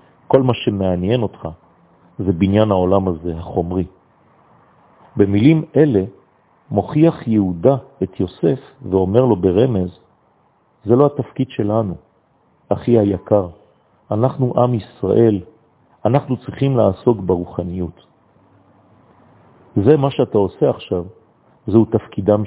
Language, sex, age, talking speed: French, male, 40-59, 100 wpm